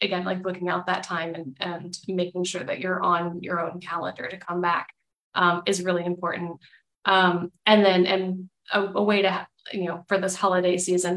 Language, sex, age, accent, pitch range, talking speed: English, female, 20-39, American, 175-190 Hz, 200 wpm